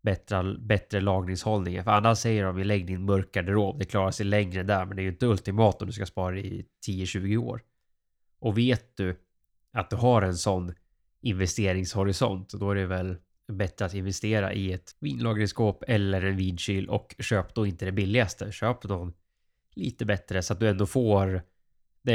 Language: Swedish